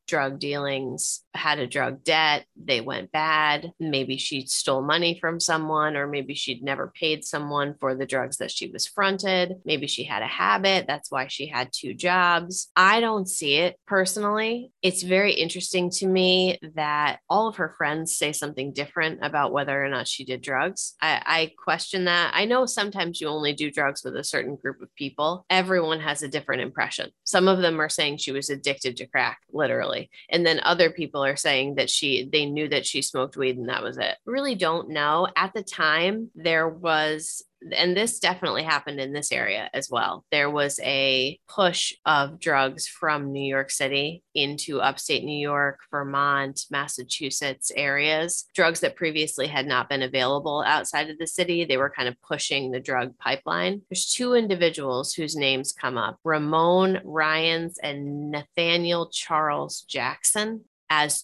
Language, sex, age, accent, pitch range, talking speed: English, female, 20-39, American, 140-175 Hz, 180 wpm